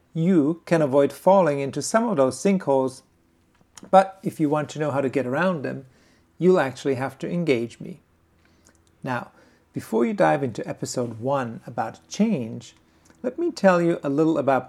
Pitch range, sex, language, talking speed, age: 125-170 Hz, male, English, 170 wpm, 50-69